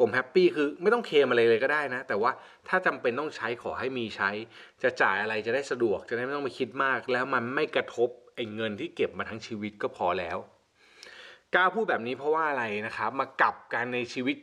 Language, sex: Thai, male